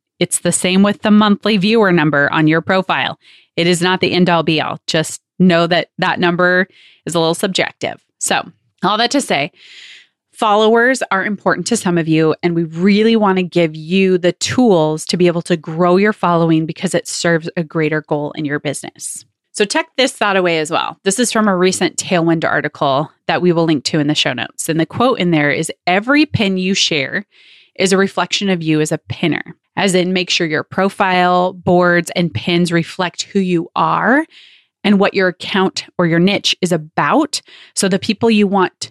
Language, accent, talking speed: English, American, 200 wpm